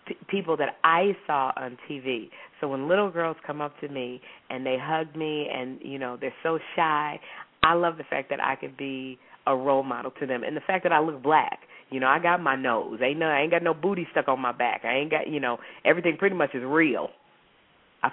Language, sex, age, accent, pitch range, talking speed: English, female, 40-59, American, 140-170 Hz, 240 wpm